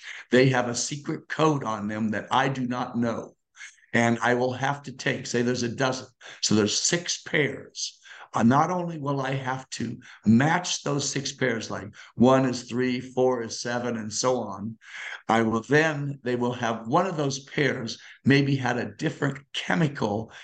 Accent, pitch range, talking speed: American, 115-140 Hz, 185 wpm